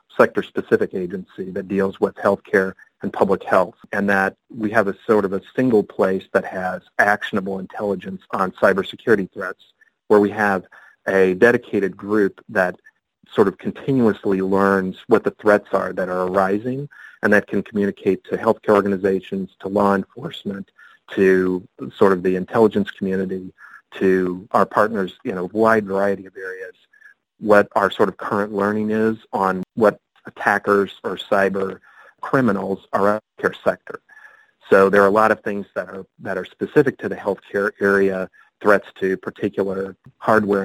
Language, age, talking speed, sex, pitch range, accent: English, 40-59, 155 wpm, male, 95-105 Hz, American